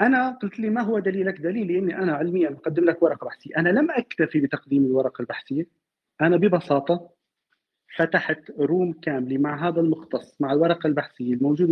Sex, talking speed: male, 165 wpm